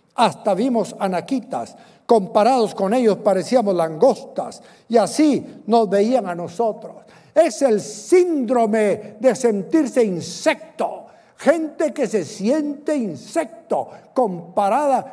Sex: male